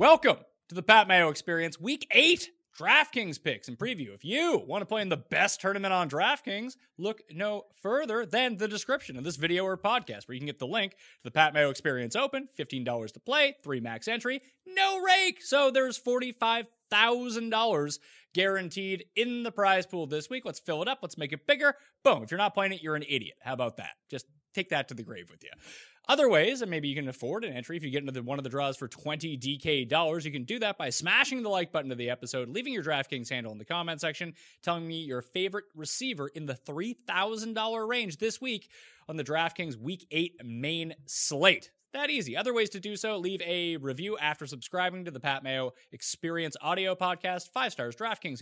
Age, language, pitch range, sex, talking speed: 30-49, English, 145-225 Hz, male, 215 wpm